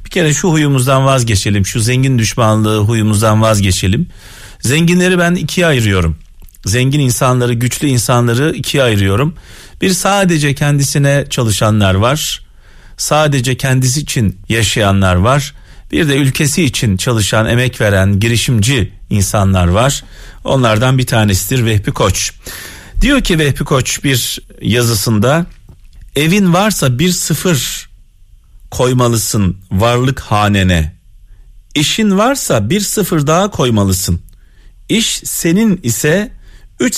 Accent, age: native, 40-59